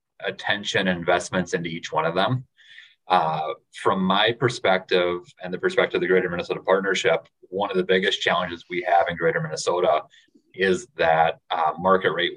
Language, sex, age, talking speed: English, male, 30-49, 165 wpm